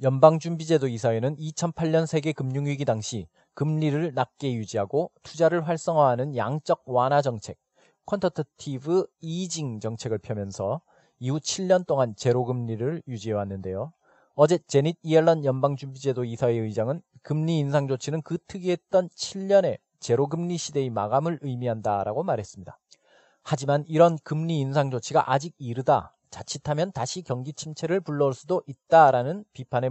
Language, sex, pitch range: Korean, male, 125-160 Hz